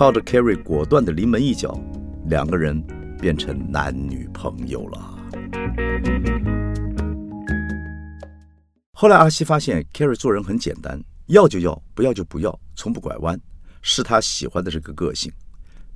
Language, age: Chinese, 50-69